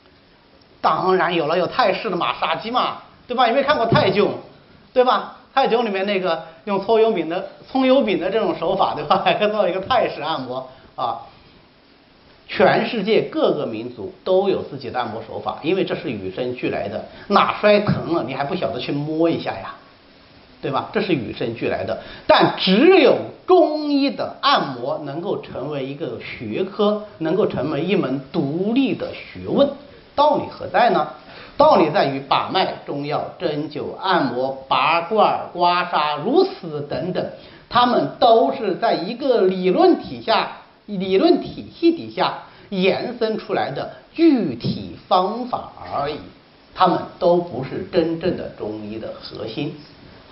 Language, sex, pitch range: Chinese, male, 165-260 Hz